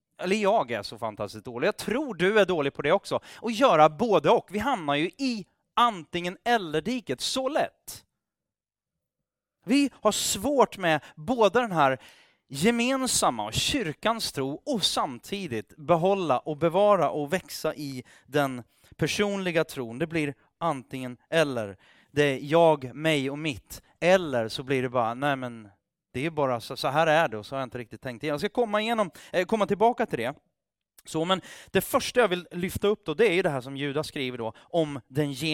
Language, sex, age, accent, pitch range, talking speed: Swedish, male, 30-49, native, 135-195 Hz, 185 wpm